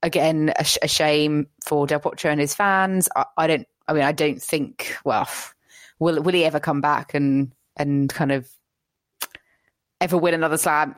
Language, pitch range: English, 150-180 Hz